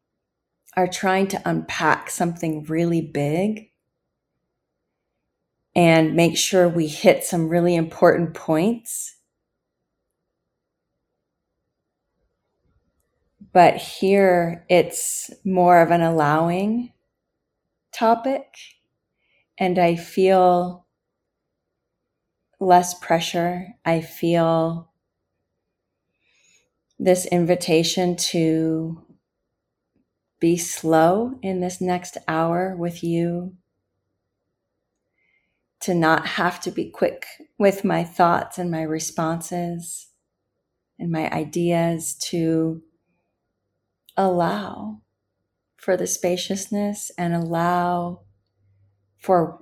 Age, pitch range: 30-49, 160-180 Hz